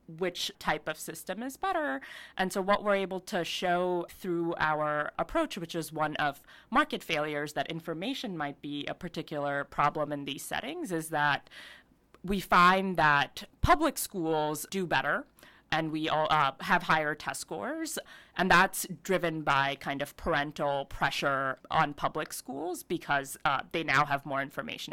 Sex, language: female, English